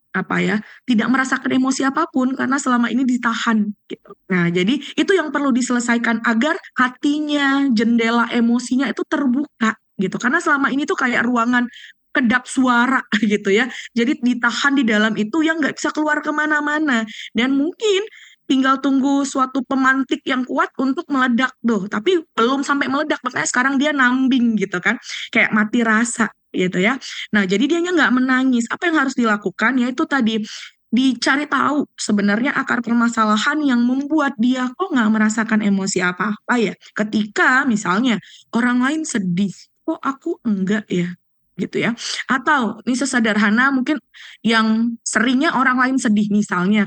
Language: Indonesian